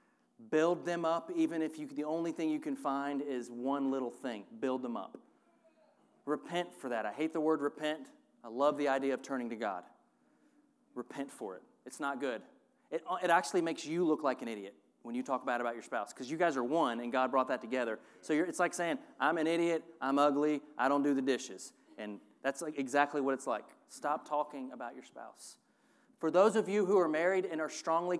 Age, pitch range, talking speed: 30-49, 135-175 Hz, 220 wpm